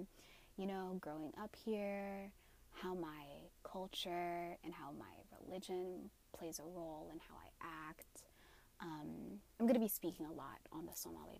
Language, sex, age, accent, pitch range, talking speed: English, female, 20-39, American, 170-220 Hz, 145 wpm